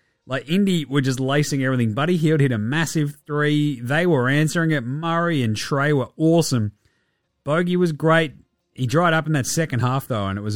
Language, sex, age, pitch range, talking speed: English, male, 30-49, 125-165 Hz, 200 wpm